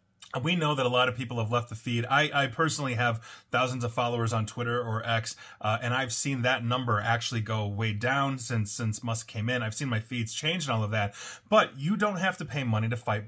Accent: American